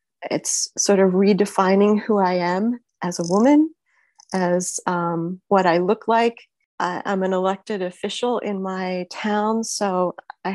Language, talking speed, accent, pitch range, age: English, 140 wpm, American, 185-215 Hz, 30-49